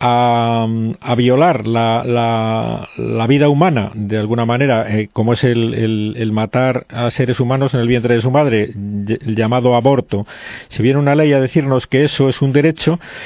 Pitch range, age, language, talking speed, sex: 115-150 Hz, 50-69, Spanish, 190 wpm, male